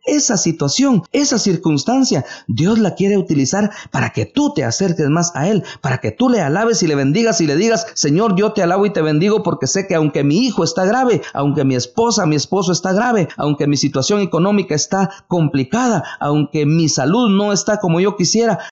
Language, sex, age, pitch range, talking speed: English, male, 50-69, 135-205 Hz, 200 wpm